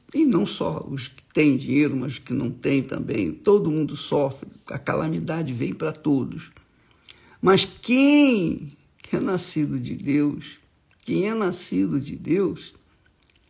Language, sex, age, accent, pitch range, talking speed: Portuguese, male, 60-79, Brazilian, 140-205 Hz, 140 wpm